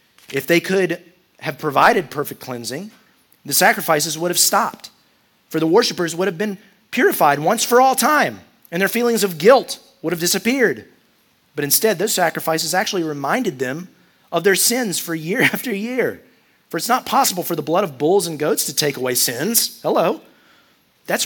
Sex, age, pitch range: male, 30-49, 150-215 Hz